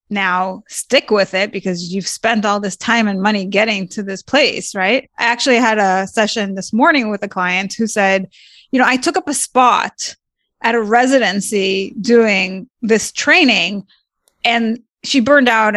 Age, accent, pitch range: 20-39, American, 200-260 Hz